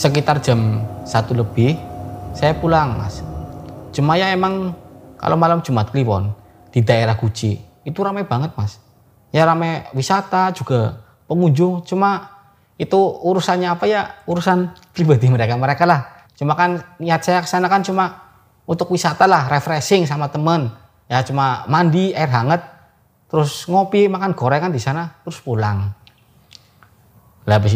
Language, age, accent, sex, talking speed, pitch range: Indonesian, 20-39, native, male, 135 wpm, 115-175 Hz